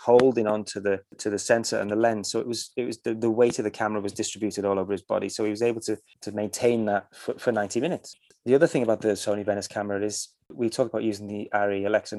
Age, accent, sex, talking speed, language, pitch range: 20-39, British, male, 270 wpm, English, 105-120 Hz